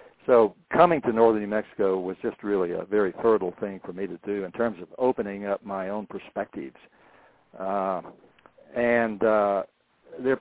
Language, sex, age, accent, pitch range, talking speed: English, male, 60-79, American, 100-120 Hz, 165 wpm